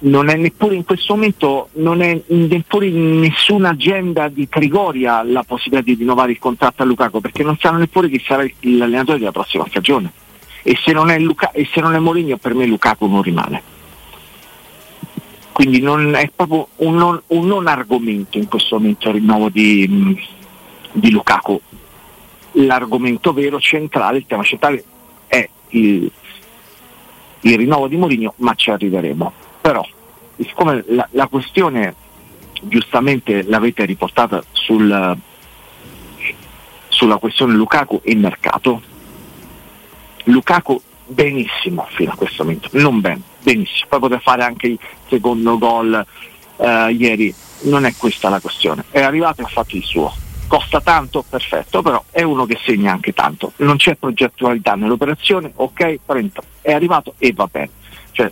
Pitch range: 115-160 Hz